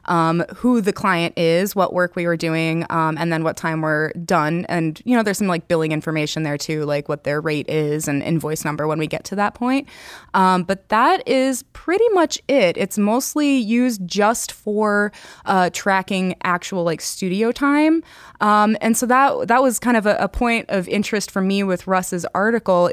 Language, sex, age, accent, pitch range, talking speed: English, female, 20-39, American, 175-240 Hz, 200 wpm